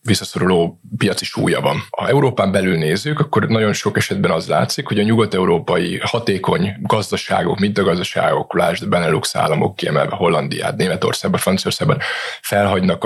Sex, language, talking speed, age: male, Hungarian, 140 wpm, 20-39